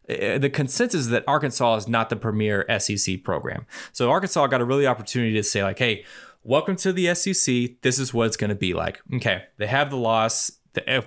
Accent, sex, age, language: American, male, 20-39, English